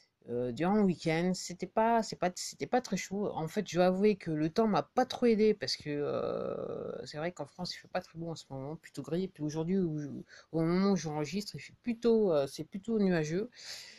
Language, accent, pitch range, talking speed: English, French, 155-225 Hz, 245 wpm